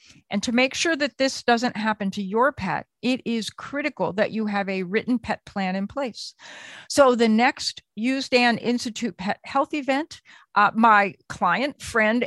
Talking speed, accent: 170 wpm, American